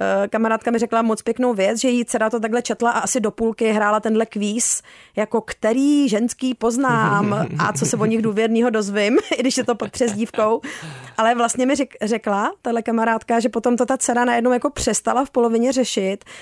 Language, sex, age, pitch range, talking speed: Czech, female, 30-49, 215-235 Hz, 195 wpm